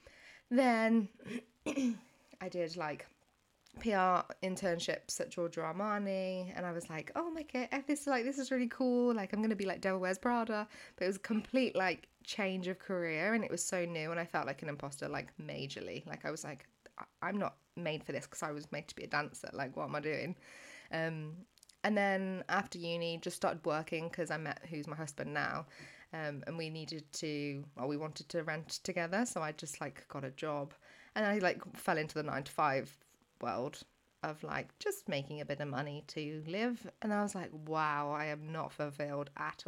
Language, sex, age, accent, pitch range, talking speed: English, female, 20-39, British, 160-215 Hz, 205 wpm